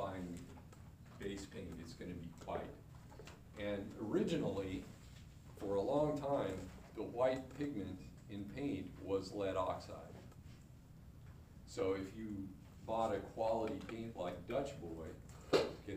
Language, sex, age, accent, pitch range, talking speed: English, male, 50-69, American, 95-120 Hz, 125 wpm